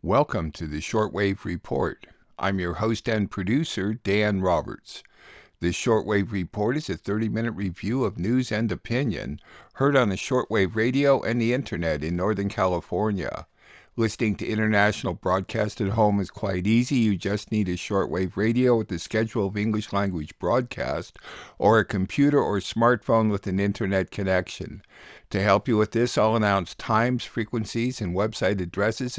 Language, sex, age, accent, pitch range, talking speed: English, male, 60-79, American, 95-115 Hz, 160 wpm